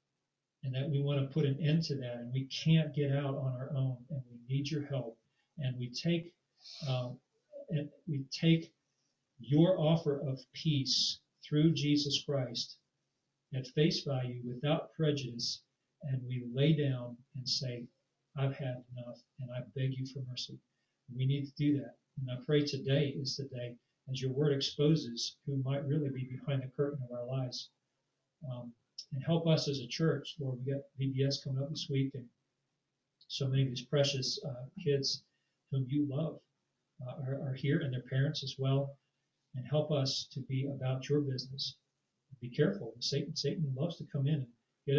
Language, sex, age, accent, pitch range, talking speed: English, male, 40-59, American, 130-145 Hz, 180 wpm